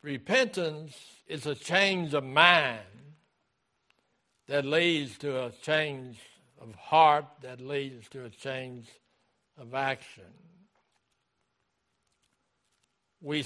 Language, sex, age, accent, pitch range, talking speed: English, male, 60-79, American, 120-155 Hz, 95 wpm